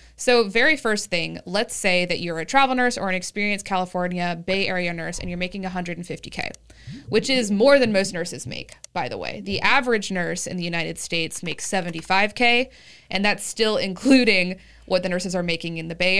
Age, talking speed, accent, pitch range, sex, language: 20-39, 195 wpm, American, 175-205 Hz, female, English